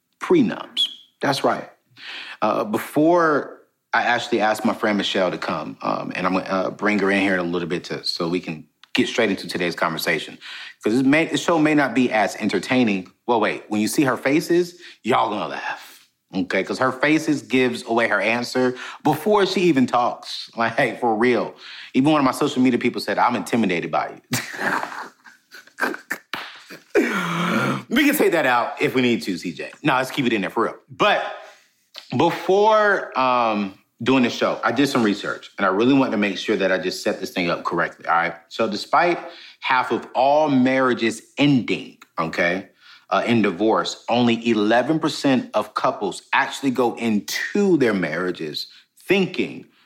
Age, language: 30-49, English